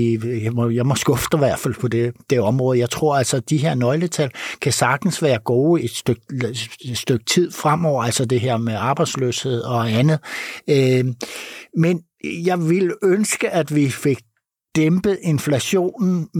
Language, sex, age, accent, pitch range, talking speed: Danish, male, 60-79, native, 120-160 Hz, 165 wpm